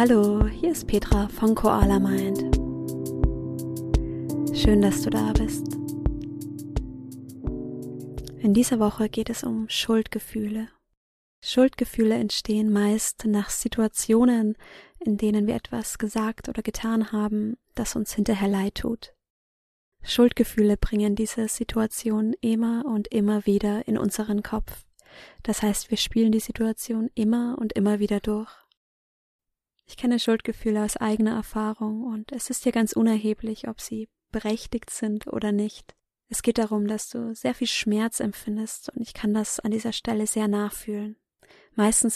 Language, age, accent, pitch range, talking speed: German, 20-39, German, 210-230 Hz, 135 wpm